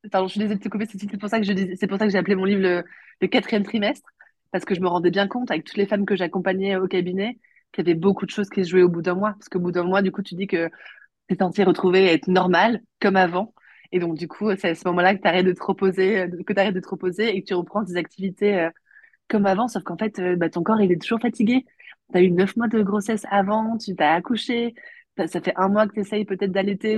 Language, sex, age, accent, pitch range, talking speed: French, female, 20-39, French, 185-220 Hz, 280 wpm